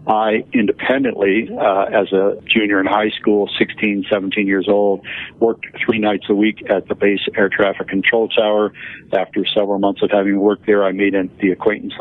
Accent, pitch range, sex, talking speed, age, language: American, 100-105 Hz, male, 180 wpm, 50-69, English